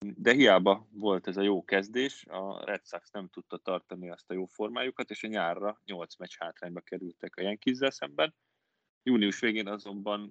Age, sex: 20-39, male